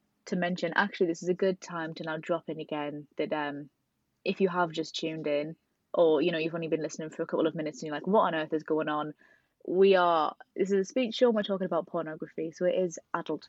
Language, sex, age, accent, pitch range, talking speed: English, female, 20-39, British, 160-195 Hz, 255 wpm